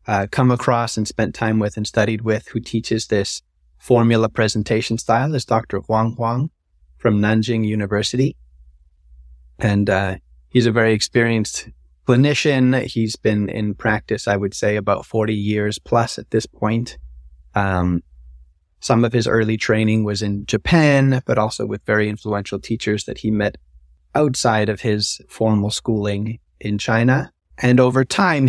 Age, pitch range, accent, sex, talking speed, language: 30-49, 105-125 Hz, American, male, 150 wpm, English